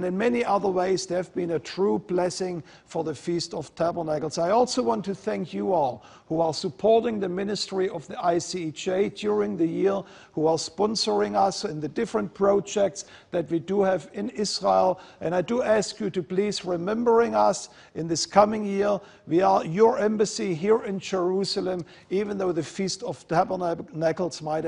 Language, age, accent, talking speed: English, 50-69, German, 180 wpm